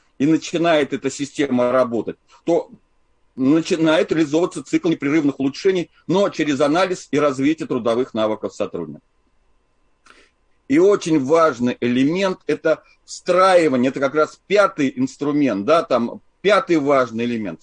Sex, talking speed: male, 125 wpm